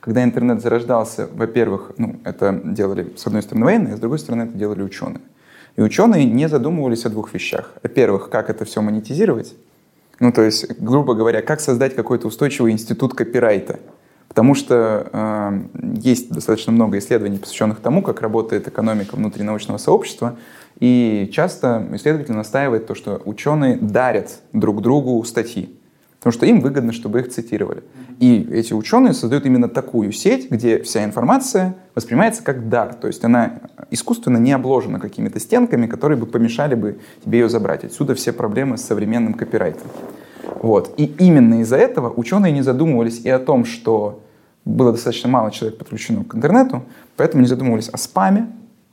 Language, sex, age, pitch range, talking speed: Russian, male, 20-39, 110-150 Hz, 160 wpm